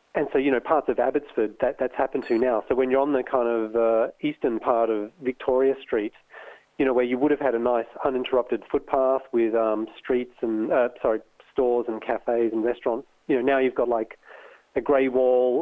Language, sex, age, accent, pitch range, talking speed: English, male, 40-59, Australian, 110-125 Hz, 210 wpm